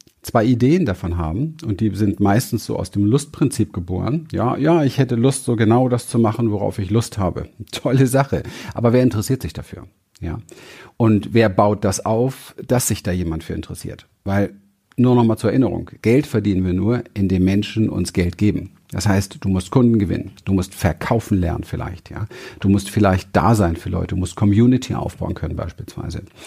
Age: 50-69